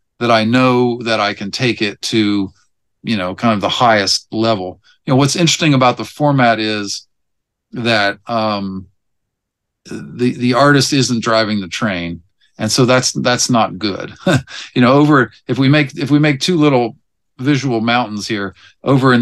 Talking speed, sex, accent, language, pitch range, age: 170 wpm, male, American, English, 110-130 Hz, 50-69